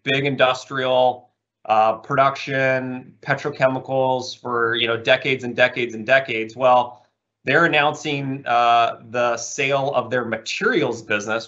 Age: 30-49